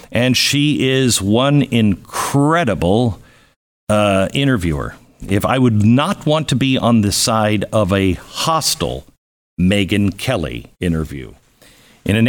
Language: English